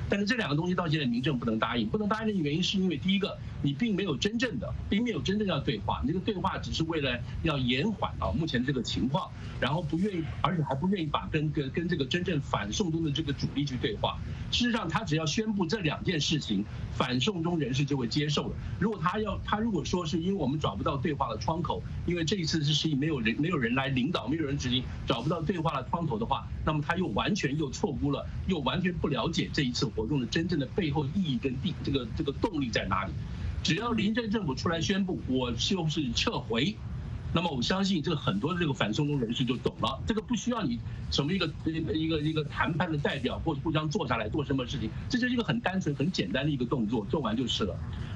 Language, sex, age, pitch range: English, male, 50-69, 140-185 Hz